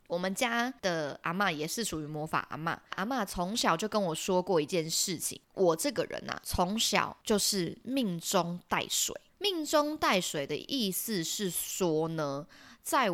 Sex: female